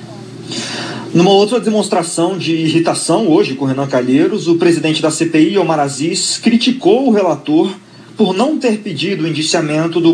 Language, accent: Portuguese, Brazilian